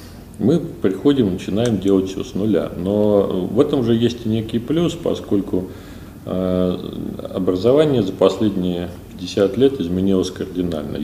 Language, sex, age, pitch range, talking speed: Russian, male, 40-59, 85-100 Hz, 125 wpm